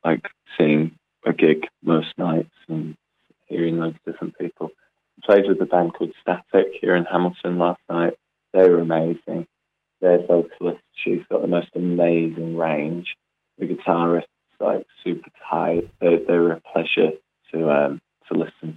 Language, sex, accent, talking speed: English, male, British, 155 wpm